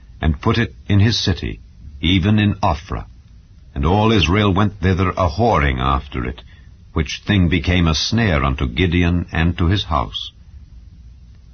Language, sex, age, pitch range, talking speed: English, male, 60-79, 75-100 Hz, 145 wpm